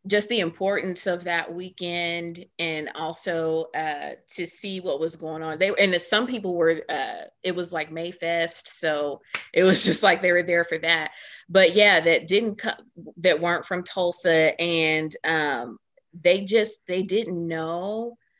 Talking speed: 170 wpm